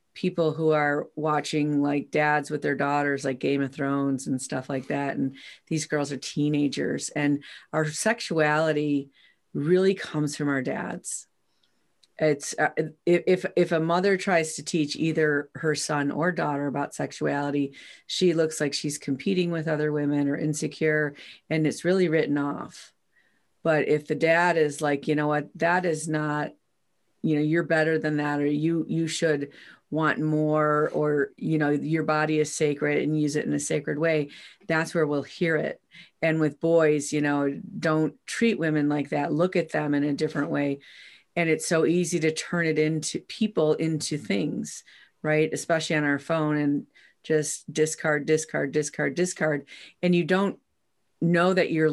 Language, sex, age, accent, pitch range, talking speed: English, female, 40-59, American, 145-165 Hz, 170 wpm